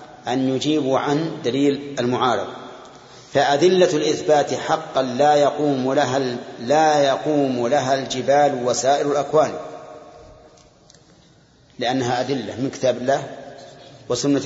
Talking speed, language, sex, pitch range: 95 wpm, Arabic, male, 130-150 Hz